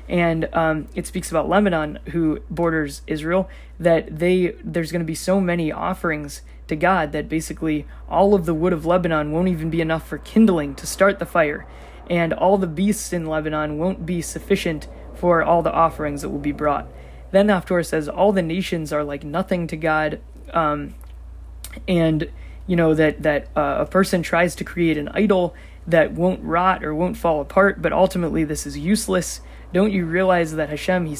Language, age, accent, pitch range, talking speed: English, 20-39, American, 155-185 Hz, 190 wpm